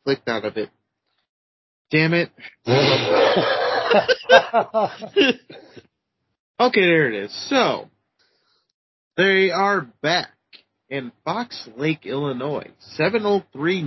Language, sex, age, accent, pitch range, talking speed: English, male, 30-49, American, 125-170 Hz, 80 wpm